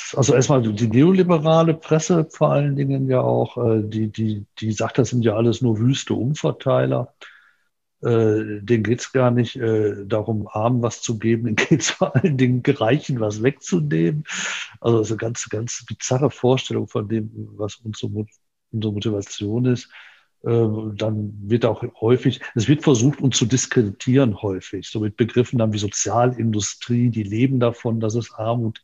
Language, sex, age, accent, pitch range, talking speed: German, male, 60-79, German, 110-130 Hz, 160 wpm